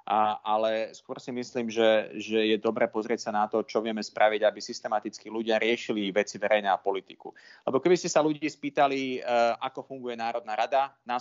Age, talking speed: 30-49, 185 wpm